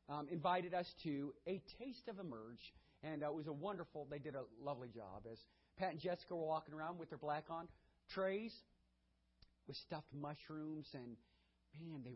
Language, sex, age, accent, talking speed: English, male, 40-59, American, 185 wpm